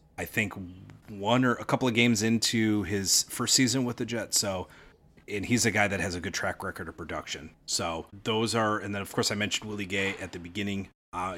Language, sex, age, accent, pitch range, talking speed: English, male, 30-49, American, 90-105 Hz, 225 wpm